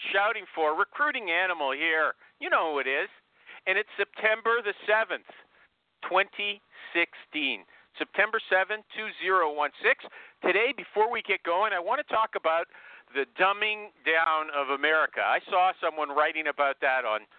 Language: English